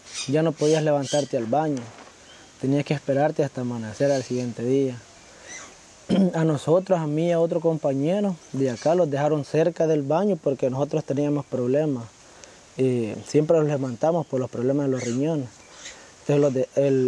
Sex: male